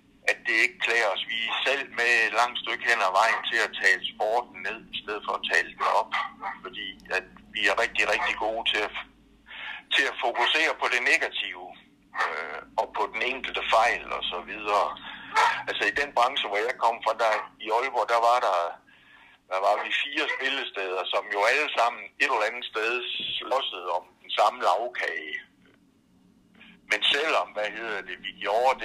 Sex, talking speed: male, 185 wpm